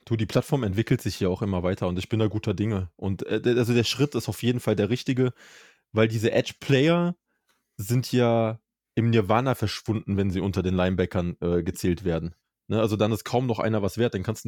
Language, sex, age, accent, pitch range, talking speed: German, male, 20-39, German, 100-130 Hz, 220 wpm